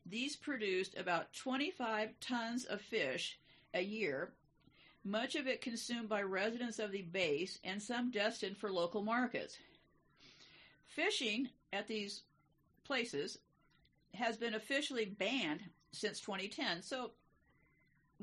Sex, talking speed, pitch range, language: female, 115 wpm, 195-255 Hz, English